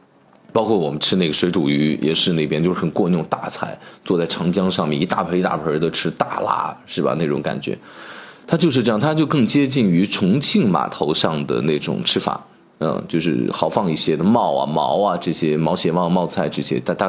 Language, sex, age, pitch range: Chinese, male, 20-39, 105-175 Hz